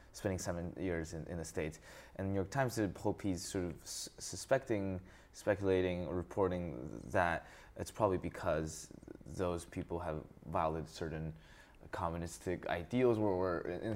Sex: male